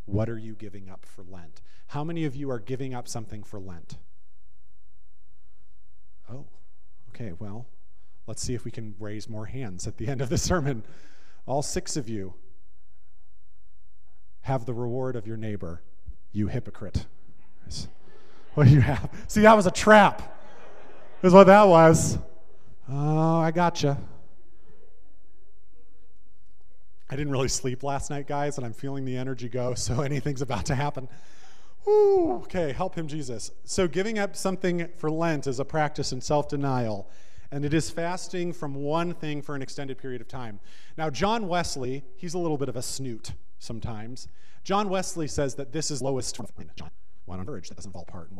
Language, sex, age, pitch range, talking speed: English, male, 40-59, 95-145 Hz, 170 wpm